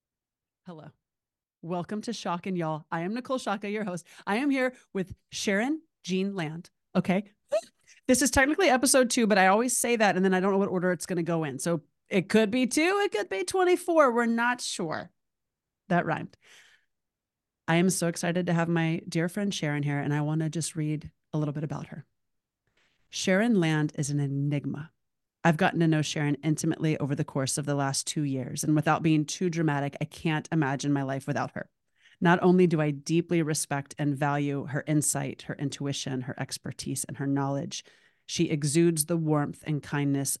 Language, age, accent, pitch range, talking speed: English, 30-49, American, 145-185 Hz, 195 wpm